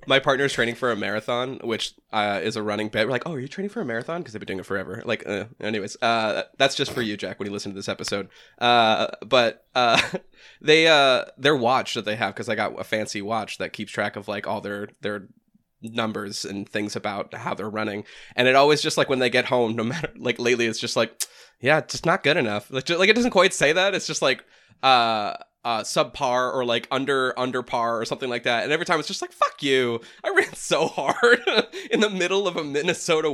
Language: English